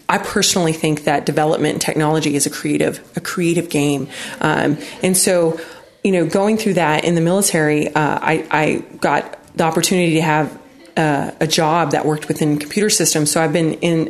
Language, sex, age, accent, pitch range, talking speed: English, female, 30-49, American, 160-185 Hz, 185 wpm